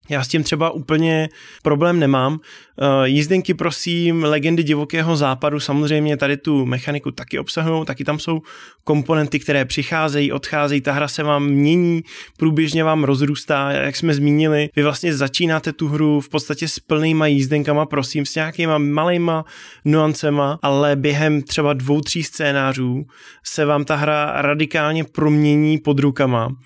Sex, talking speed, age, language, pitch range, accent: male, 145 wpm, 20-39, Czech, 140-155 Hz, native